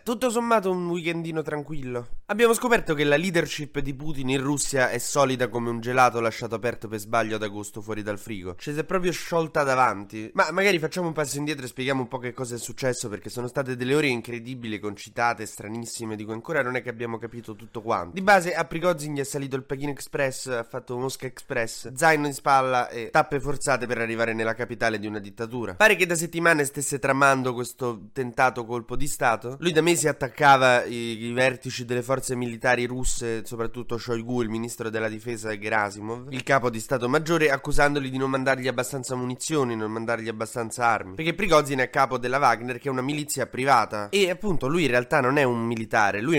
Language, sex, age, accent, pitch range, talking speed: Italian, male, 20-39, native, 115-145 Hz, 205 wpm